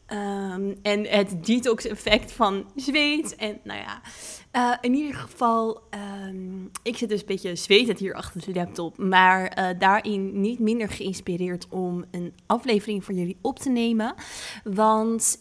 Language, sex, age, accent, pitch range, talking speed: Dutch, female, 20-39, Dutch, 195-225 Hz, 150 wpm